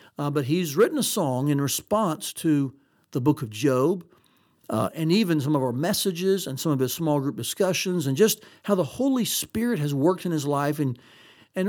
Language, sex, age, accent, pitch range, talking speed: English, male, 60-79, American, 145-180 Hz, 205 wpm